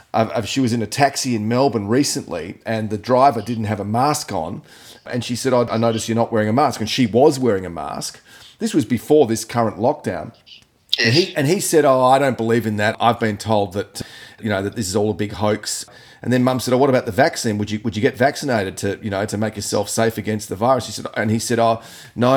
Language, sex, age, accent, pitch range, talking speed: English, male, 30-49, Australian, 110-135 Hz, 260 wpm